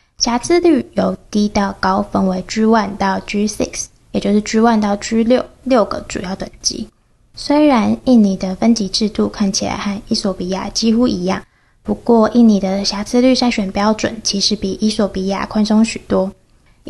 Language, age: Chinese, 10-29